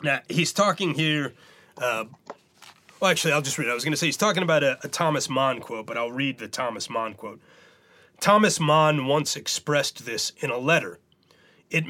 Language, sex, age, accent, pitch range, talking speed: English, male, 30-49, American, 120-150 Hz, 200 wpm